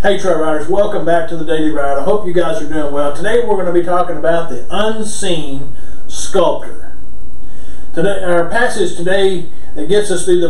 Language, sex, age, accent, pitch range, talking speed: English, male, 40-59, American, 130-175 Hz, 200 wpm